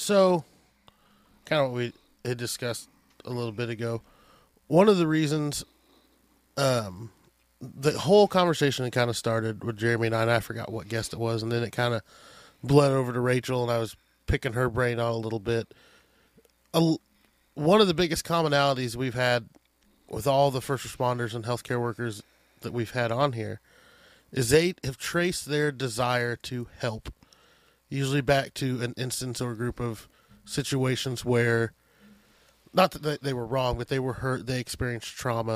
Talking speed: 175 wpm